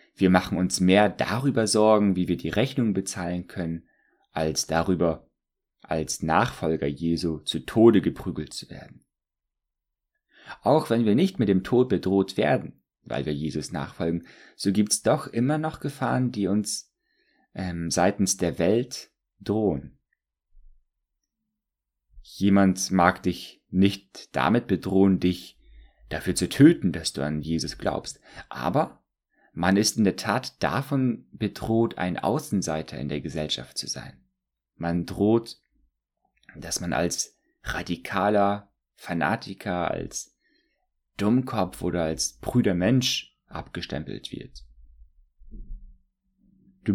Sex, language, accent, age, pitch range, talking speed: male, German, German, 30-49, 75-110 Hz, 120 wpm